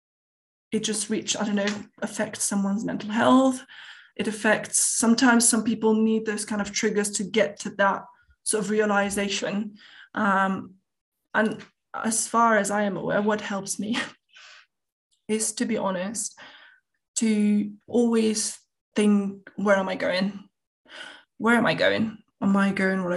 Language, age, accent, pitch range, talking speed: English, 20-39, British, 200-230 Hz, 150 wpm